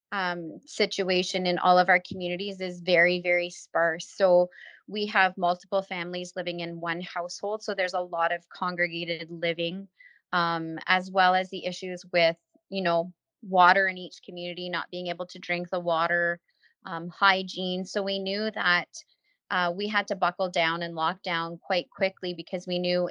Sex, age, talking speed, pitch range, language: female, 20-39, 170 wpm, 170-190 Hz, English